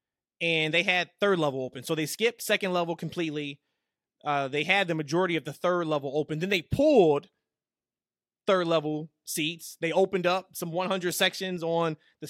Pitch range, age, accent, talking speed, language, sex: 150-185 Hz, 20-39, American, 155 wpm, English, male